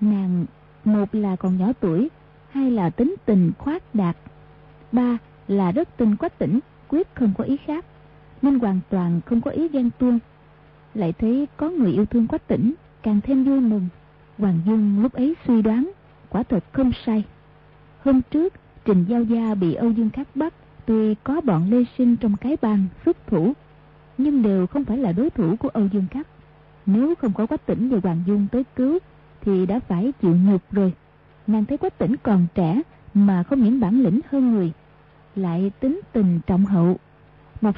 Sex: female